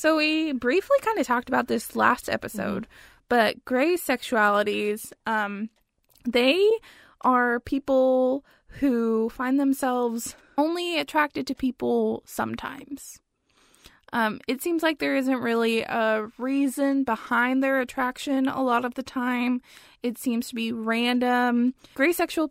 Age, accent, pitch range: 20-39, American, 230-275 Hz